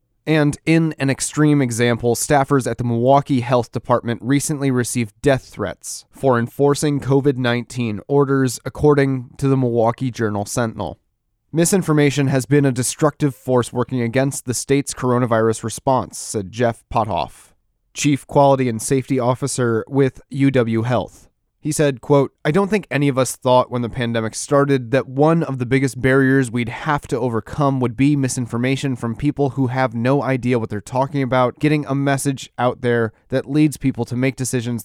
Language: English